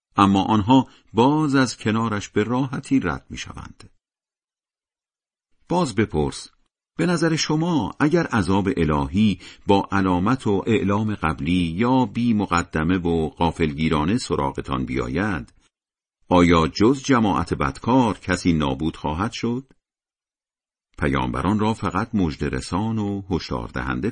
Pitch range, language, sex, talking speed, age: 75-115 Hz, Persian, male, 105 wpm, 50-69